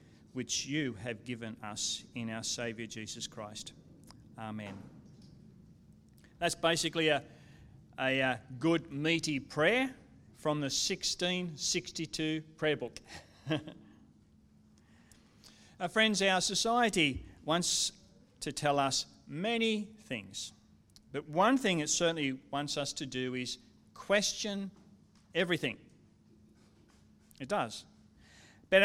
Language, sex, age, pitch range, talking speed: English, male, 40-59, 125-170 Hz, 100 wpm